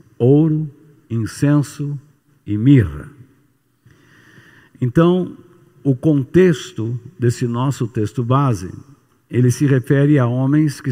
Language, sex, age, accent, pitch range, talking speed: Portuguese, male, 60-79, Brazilian, 125-155 Hz, 95 wpm